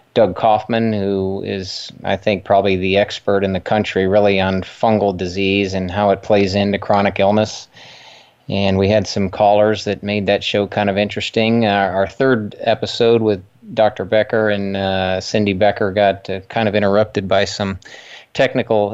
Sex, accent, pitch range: male, American, 95-110 Hz